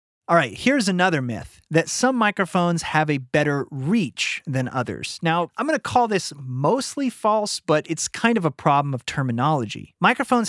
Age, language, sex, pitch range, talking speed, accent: 30-49, English, male, 130-185 Hz, 170 wpm, American